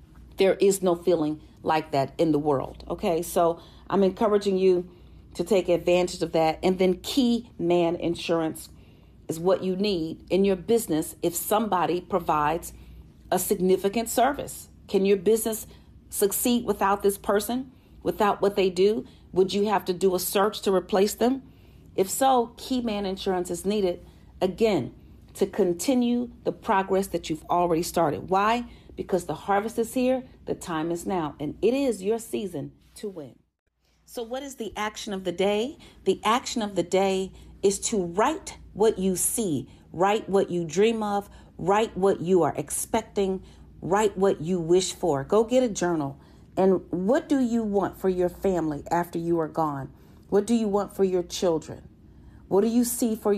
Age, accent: 40-59, American